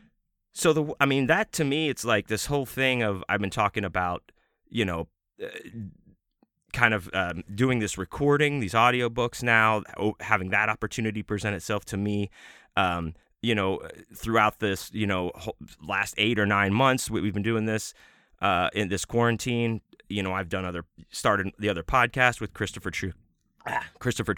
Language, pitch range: English, 95-120 Hz